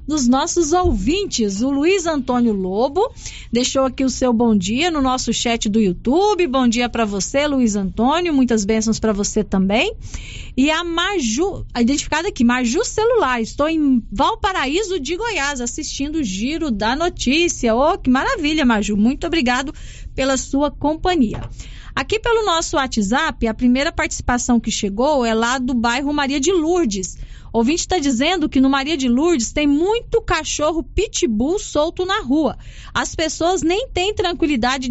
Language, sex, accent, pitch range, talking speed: Portuguese, female, Brazilian, 245-335 Hz, 155 wpm